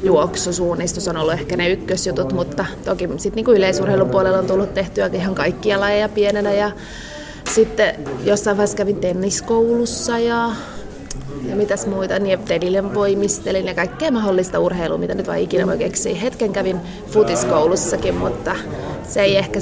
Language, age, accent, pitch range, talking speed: Finnish, 20-39, native, 190-225 Hz, 145 wpm